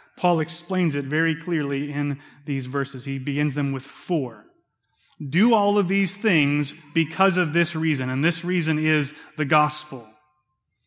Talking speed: 155 wpm